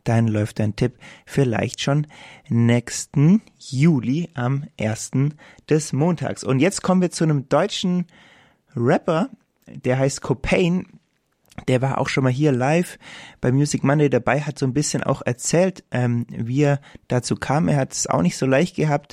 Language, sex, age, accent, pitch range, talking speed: German, male, 20-39, German, 125-150 Hz, 165 wpm